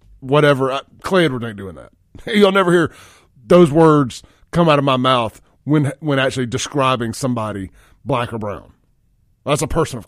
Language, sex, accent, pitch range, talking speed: English, male, American, 105-160 Hz, 180 wpm